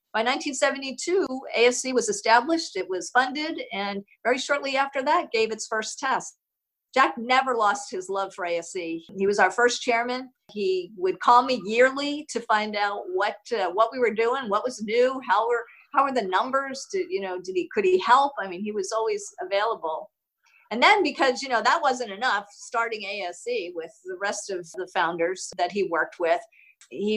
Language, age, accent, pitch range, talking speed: English, 50-69, American, 185-245 Hz, 190 wpm